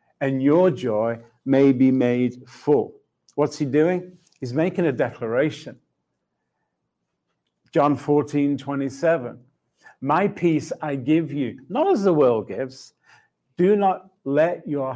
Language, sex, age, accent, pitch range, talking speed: English, male, 50-69, British, 120-155 Hz, 125 wpm